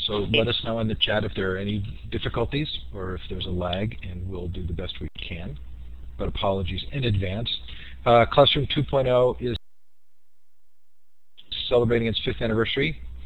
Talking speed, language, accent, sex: 165 wpm, English, American, male